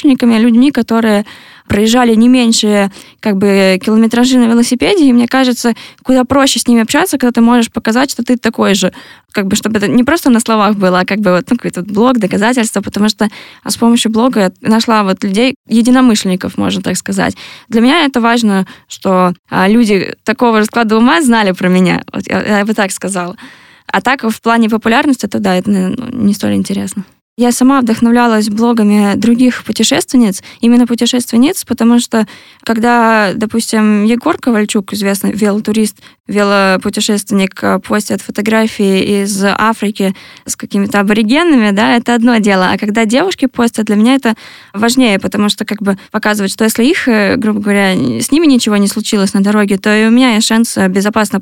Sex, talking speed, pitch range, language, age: female, 170 wpm, 205-240 Hz, Russian, 10-29